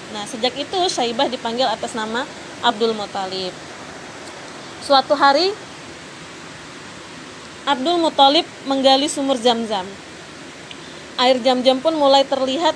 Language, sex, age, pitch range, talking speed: Indonesian, female, 20-39, 235-290 Hz, 100 wpm